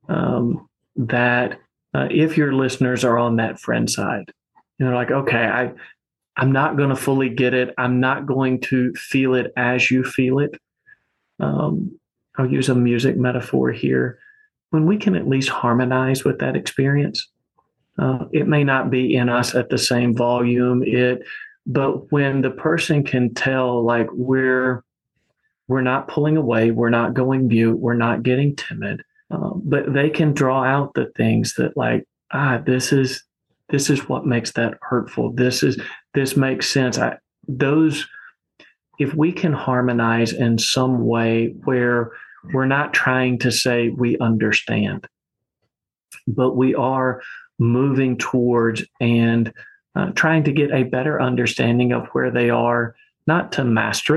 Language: English